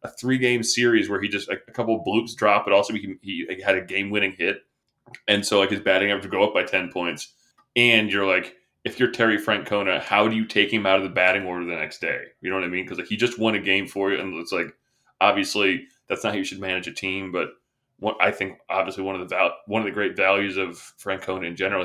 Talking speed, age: 265 wpm, 20-39